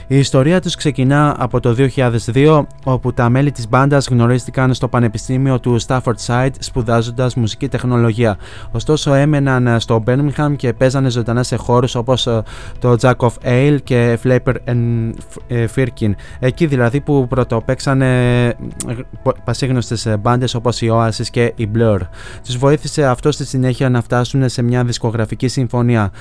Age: 20-39